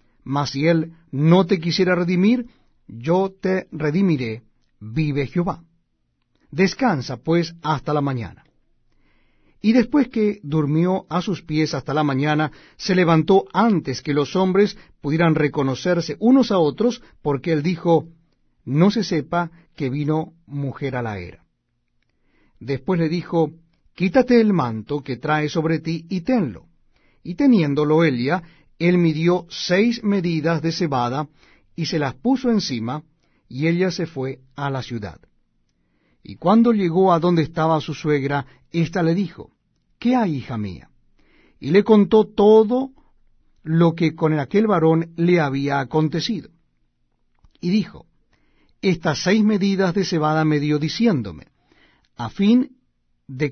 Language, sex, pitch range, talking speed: Spanish, male, 140-185 Hz, 140 wpm